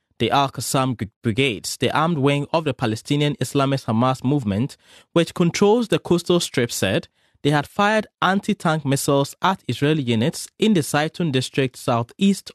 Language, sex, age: English, male, 20-39